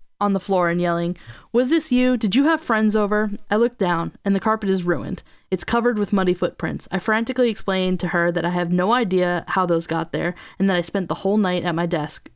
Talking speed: 245 wpm